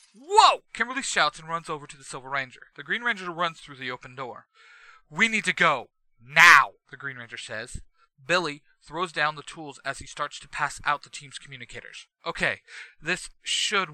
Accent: American